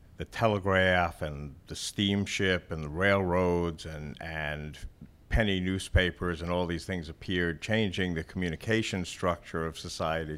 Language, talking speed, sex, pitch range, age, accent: English, 135 wpm, male, 85-100 Hz, 60-79, American